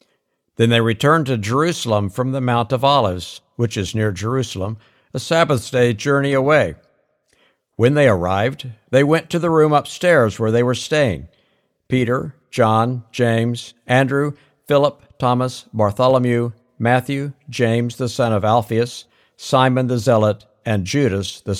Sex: male